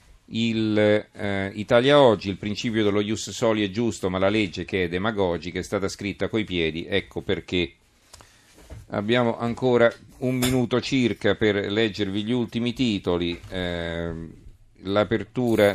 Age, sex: 40-59, male